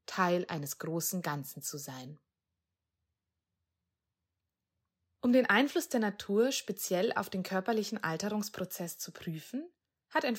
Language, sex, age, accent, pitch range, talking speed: German, female, 20-39, German, 165-230 Hz, 115 wpm